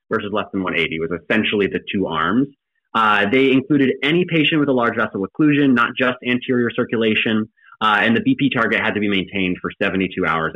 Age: 20-39